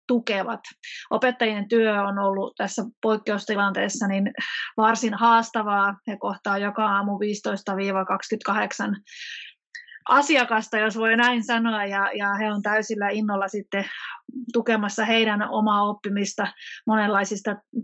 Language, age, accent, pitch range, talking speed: Finnish, 30-49, native, 200-225 Hz, 110 wpm